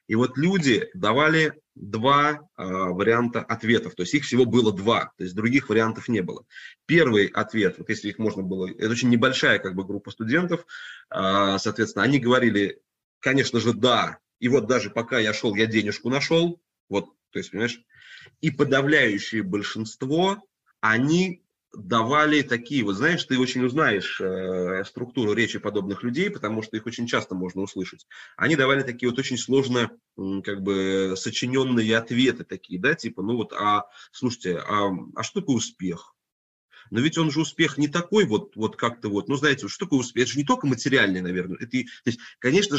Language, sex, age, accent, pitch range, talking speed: Russian, male, 20-39, native, 105-140 Hz, 170 wpm